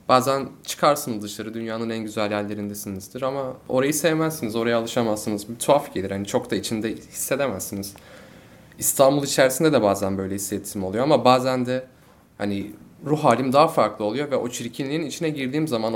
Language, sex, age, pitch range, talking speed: Turkish, male, 30-49, 110-135 Hz, 160 wpm